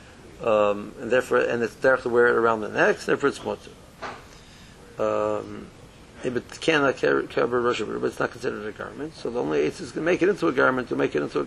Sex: male